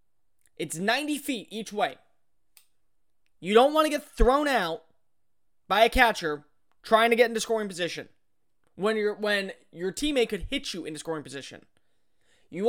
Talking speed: 150 wpm